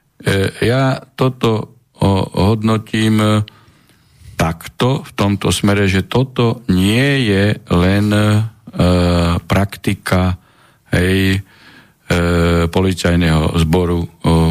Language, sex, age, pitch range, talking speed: Slovak, male, 50-69, 85-105 Hz, 90 wpm